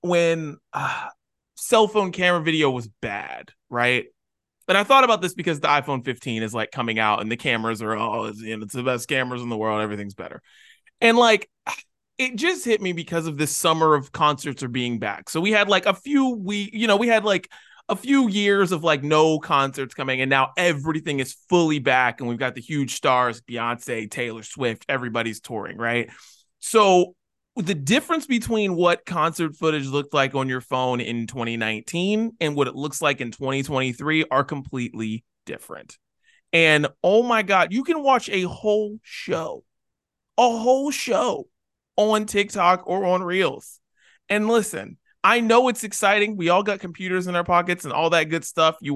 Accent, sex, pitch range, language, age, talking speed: American, male, 130-200 Hz, English, 20-39, 185 wpm